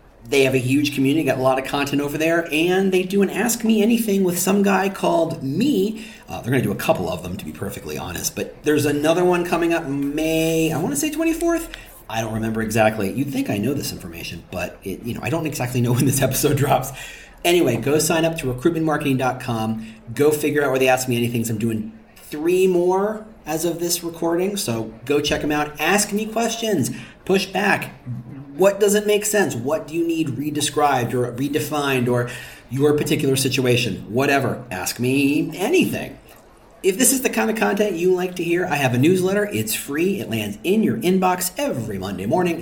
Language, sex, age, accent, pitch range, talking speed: English, male, 40-59, American, 125-185 Hz, 210 wpm